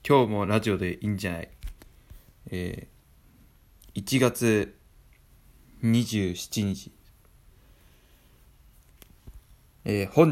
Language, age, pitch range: Japanese, 20-39, 90-110 Hz